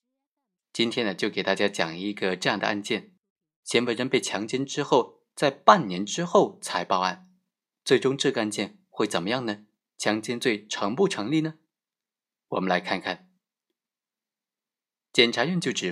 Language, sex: Chinese, male